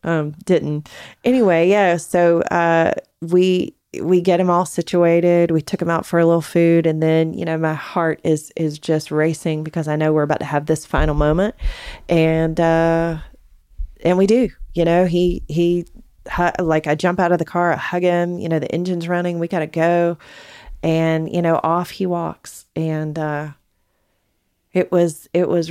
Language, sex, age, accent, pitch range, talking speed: English, female, 30-49, American, 160-185 Hz, 185 wpm